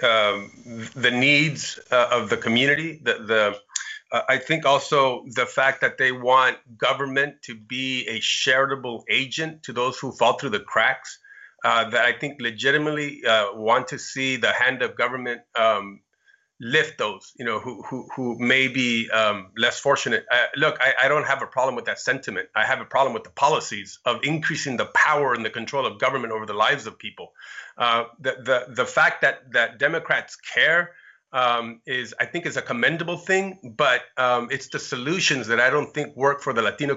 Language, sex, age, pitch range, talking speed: English, male, 30-49, 125-170 Hz, 195 wpm